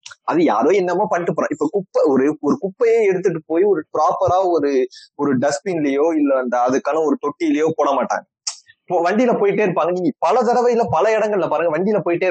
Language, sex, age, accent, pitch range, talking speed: Tamil, male, 20-39, native, 180-255 Hz, 165 wpm